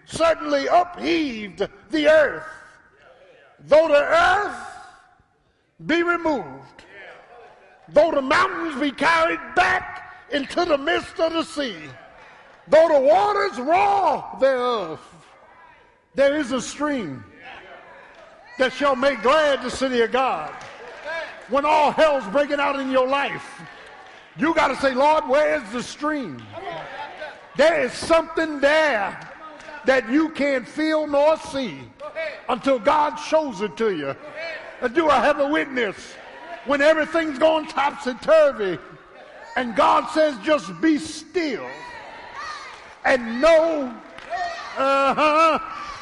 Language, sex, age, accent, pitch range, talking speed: English, male, 50-69, American, 275-320 Hz, 120 wpm